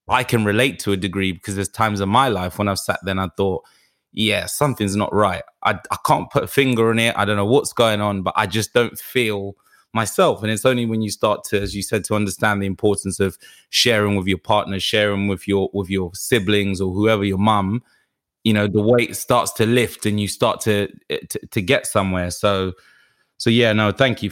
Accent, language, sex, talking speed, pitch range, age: British, English, male, 230 wpm, 95-110 Hz, 20-39